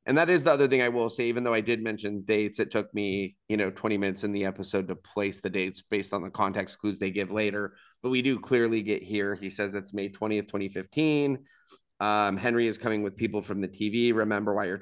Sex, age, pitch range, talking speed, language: male, 30-49, 100-120 Hz, 245 wpm, English